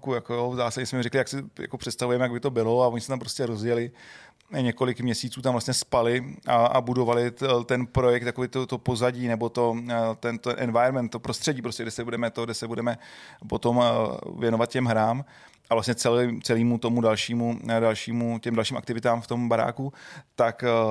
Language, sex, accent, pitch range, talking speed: Czech, male, native, 115-130 Hz, 180 wpm